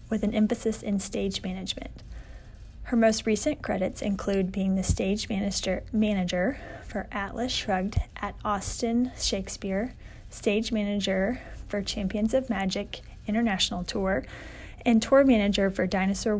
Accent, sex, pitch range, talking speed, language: American, female, 190-220 Hz, 130 wpm, English